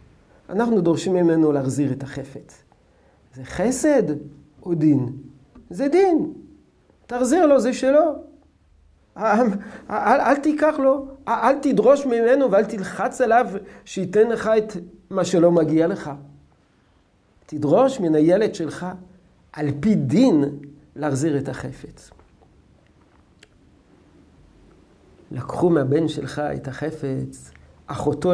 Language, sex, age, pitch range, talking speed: Hebrew, male, 50-69, 140-215 Hz, 110 wpm